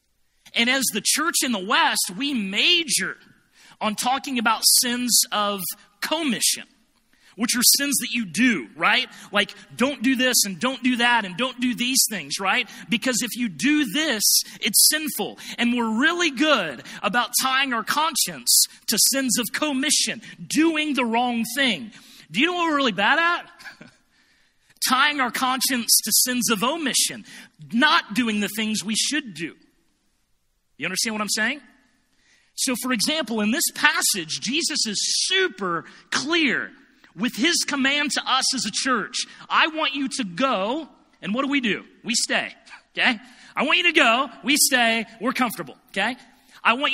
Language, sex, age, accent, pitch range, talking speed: English, male, 40-59, American, 215-275 Hz, 165 wpm